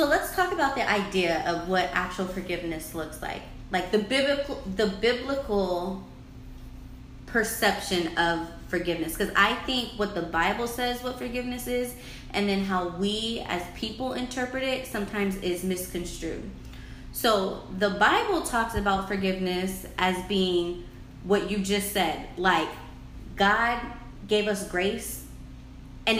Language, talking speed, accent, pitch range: English, 135 wpm, American, 180-220 Hz